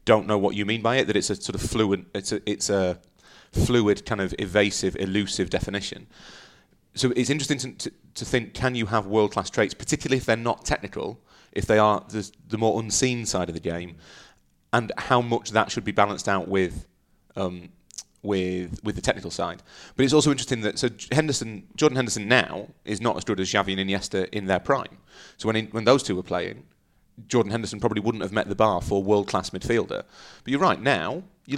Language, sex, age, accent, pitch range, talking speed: English, male, 30-49, British, 100-125 Hz, 205 wpm